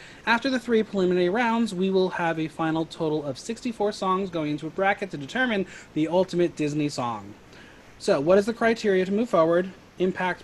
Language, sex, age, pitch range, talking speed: English, male, 30-49, 145-195 Hz, 190 wpm